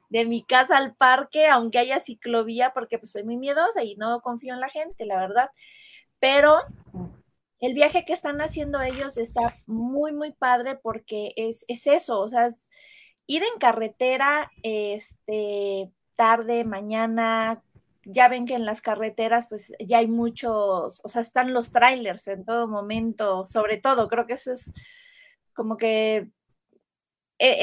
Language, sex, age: Spanish, female, 20-39